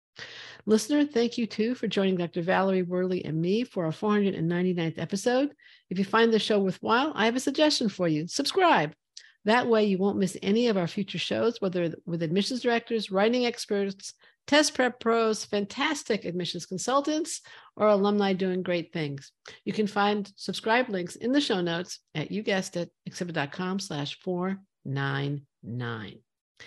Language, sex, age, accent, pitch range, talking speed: English, female, 50-69, American, 185-235 Hz, 155 wpm